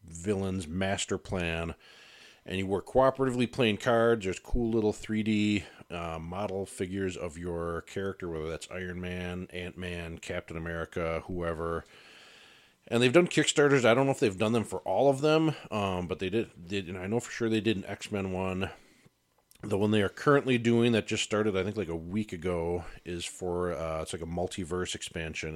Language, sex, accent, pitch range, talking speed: English, male, American, 85-105 Hz, 185 wpm